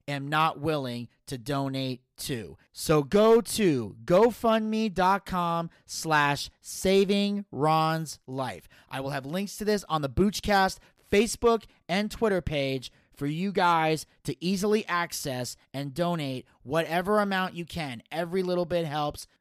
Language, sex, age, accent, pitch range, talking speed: English, male, 30-49, American, 135-190 Hz, 135 wpm